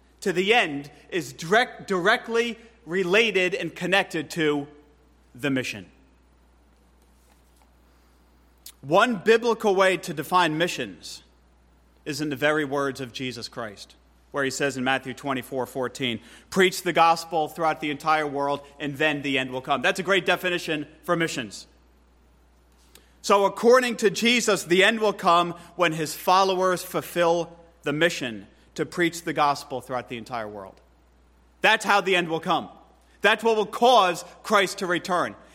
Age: 30-49